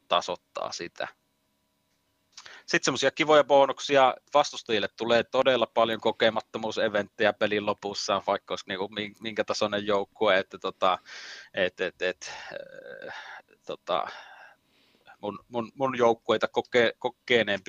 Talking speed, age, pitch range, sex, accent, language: 100 wpm, 30-49, 70-110 Hz, male, native, Finnish